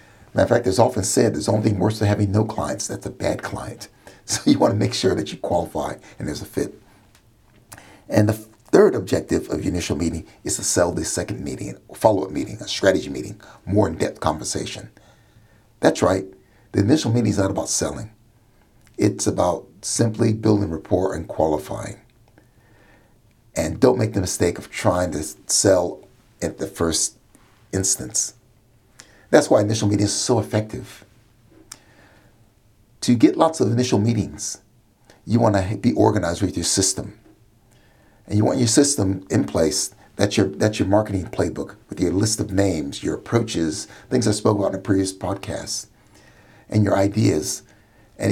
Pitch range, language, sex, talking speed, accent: 95-110 Hz, English, male, 170 wpm, American